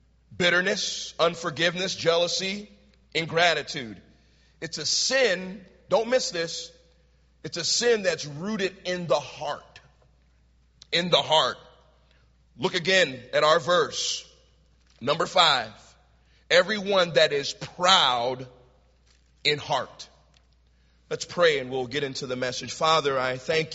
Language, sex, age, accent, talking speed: English, male, 40-59, American, 115 wpm